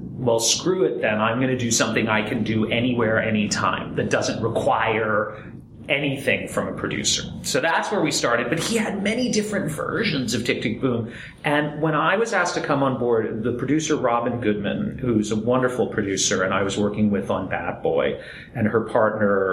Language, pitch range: English, 110-155 Hz